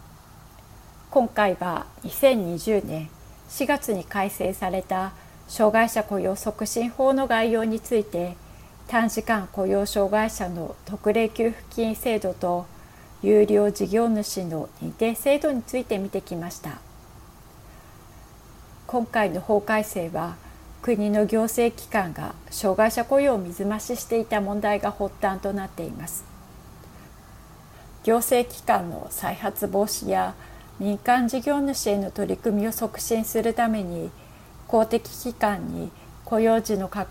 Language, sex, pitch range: Japanese, female, 190-225 Hz